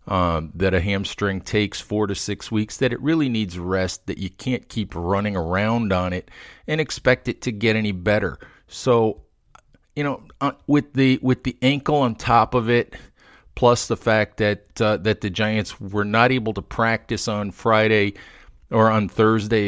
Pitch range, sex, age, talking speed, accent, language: 100-120 Hz, male, 40-59, 185 wpm, American, English